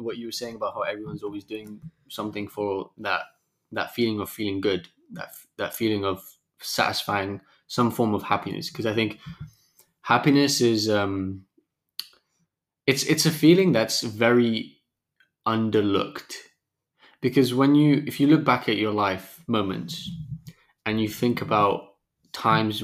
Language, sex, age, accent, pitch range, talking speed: English, male, 20-39, British, 105-140 Hz, 145 wpm